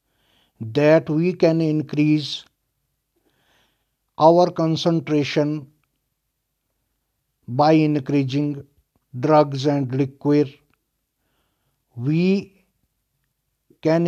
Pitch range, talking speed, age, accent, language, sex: 140-160 Hz, 55 wpm, 60-79, native, Hindi, male